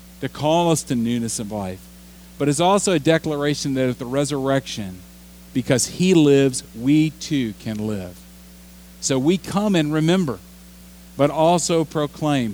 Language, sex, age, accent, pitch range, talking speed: English, male, 40-59, American, 100-155 Hz, 150 wpm